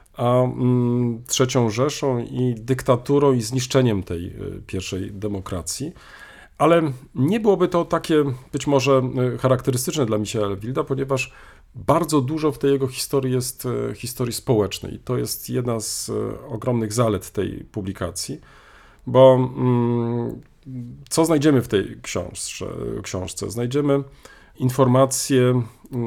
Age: 40-59